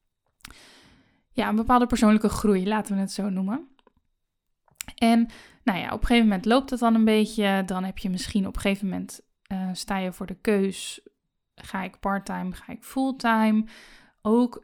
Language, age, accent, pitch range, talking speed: Dutch, 10-29, Dutch, 195-220 Hz, 175 wpm